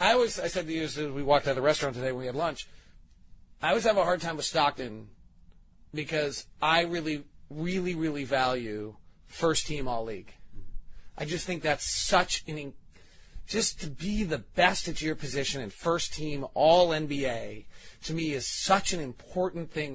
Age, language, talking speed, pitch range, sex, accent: 30-49, English, 190 wpm, 135-175 Hz, male, American